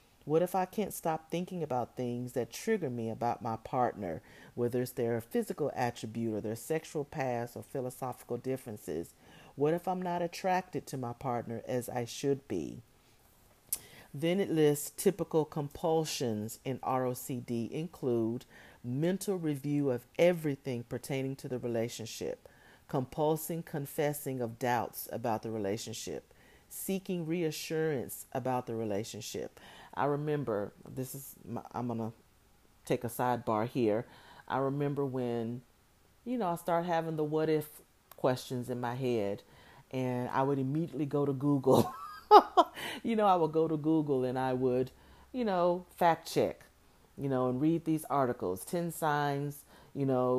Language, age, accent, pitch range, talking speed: English, 40-59, American, 120-155 Hz, 145 wpm